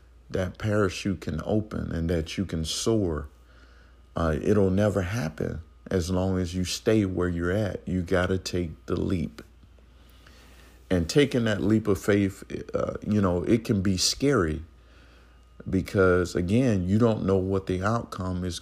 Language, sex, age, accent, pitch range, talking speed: English, male, 50-69, American, 75-100 Hz, 155 wpm